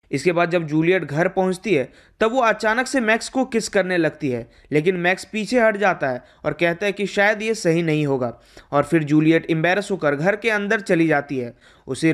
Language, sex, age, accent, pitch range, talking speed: Hindi, male, 20-39, native, 160-225 Hz, 215 wpm